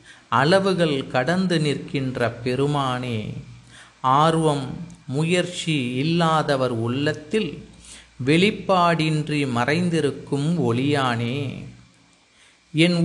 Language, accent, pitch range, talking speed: Tamil, native, 140-165 Hz, 55 wpm